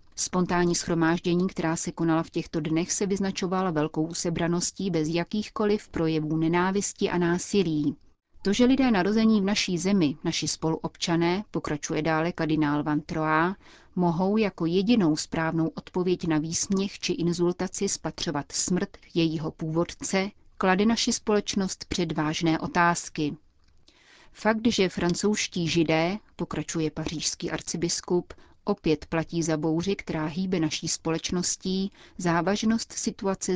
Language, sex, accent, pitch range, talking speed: Czech, female, native, 160-195 Hz, 120 wpm